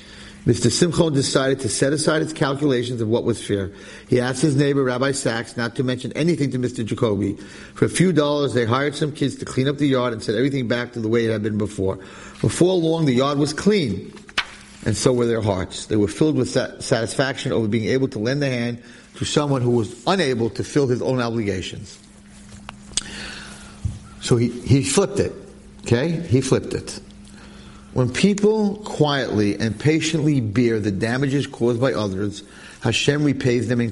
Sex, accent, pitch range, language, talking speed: male, American, 110-145 Hz, English, 190 wpm